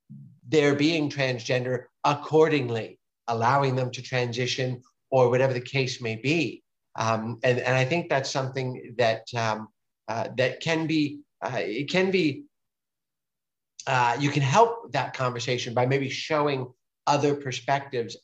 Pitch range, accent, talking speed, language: 120-150 Hz, American, 140 wpm, English